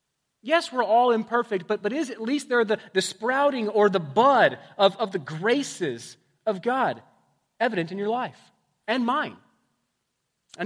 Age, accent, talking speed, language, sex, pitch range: 30-49, American, 165 wpm, English, male, 160-225 Hz